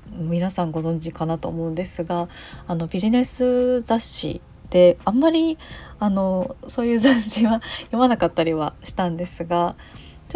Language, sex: Japanese, female